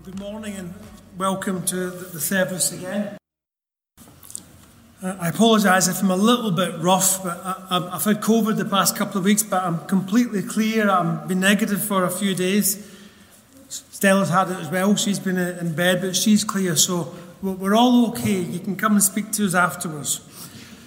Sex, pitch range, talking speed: male, 185-215 Hz, 175 wpm